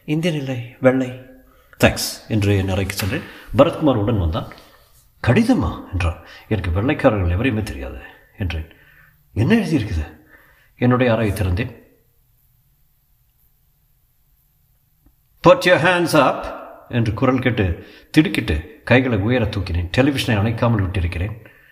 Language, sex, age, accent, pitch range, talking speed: Tamil, male, 50-69, native, 95-125 Hz, 80 wpm